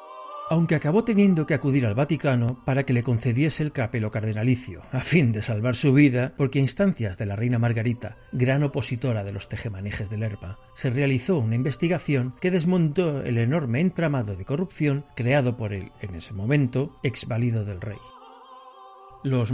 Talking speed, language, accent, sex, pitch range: 170 wpm, Spanish, Spanish, male, 115-155 Hz